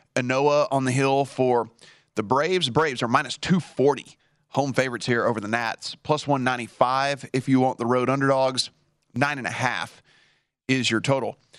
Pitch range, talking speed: 120-145 Hz, 165 wpm